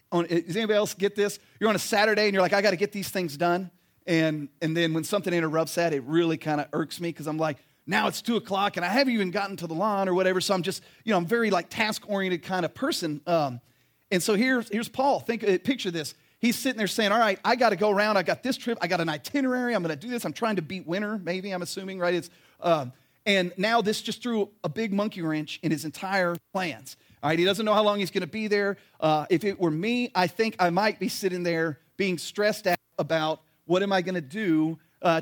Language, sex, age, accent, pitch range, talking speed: English, male, 40-59, American, 165-205 Hz, 260 wpm